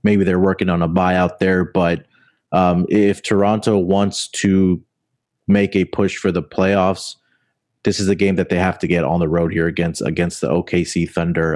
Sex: male